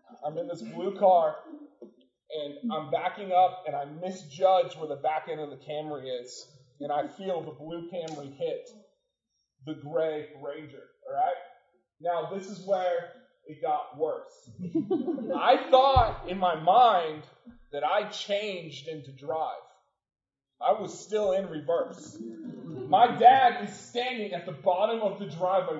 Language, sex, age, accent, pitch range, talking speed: English, male, 20-39, American, 160-240 Hz, 150 wpm